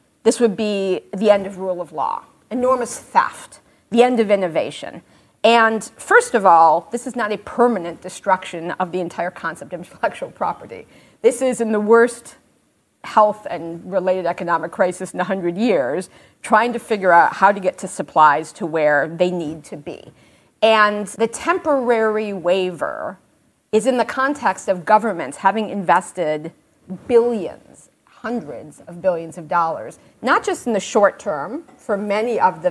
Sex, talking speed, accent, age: female, 160 wpm, American, 40-59